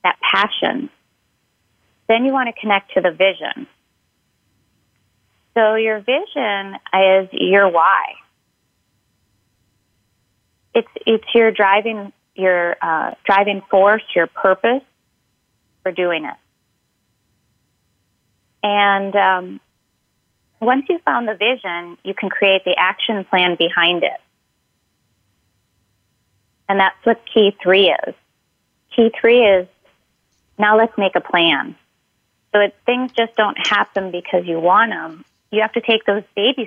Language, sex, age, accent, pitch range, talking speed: English, female, 30-49, American, 140-215 Hz, 120 wpm